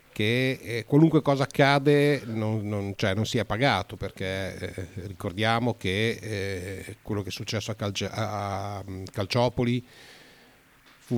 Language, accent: Italian, native